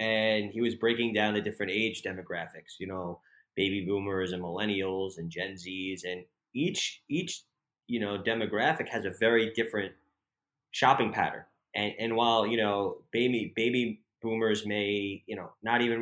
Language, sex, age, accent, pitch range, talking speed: English, male, 20-39, American, 105-120 Hz, 160 wpm